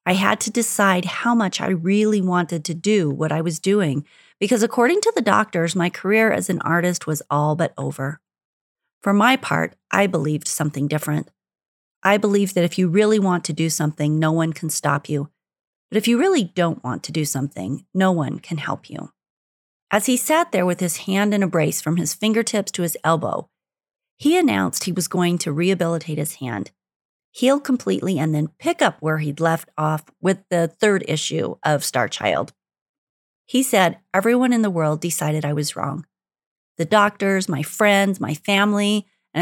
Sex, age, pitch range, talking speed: female, 40-59, 155-210 Hz, 190 wpm